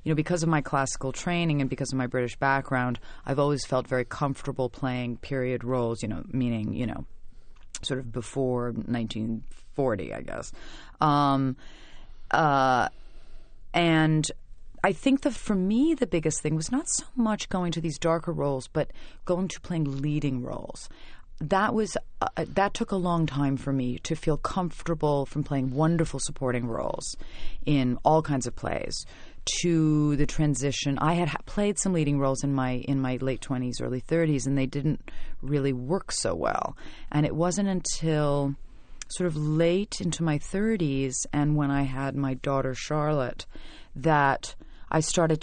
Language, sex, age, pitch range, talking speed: English, female, 30-49, 130-160 Hz, 165 wpm